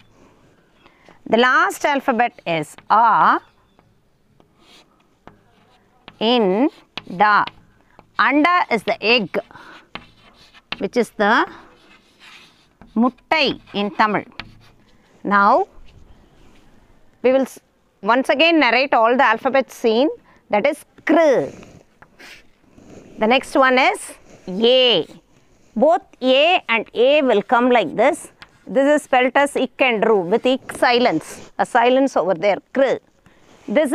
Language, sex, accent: Tamil, female, native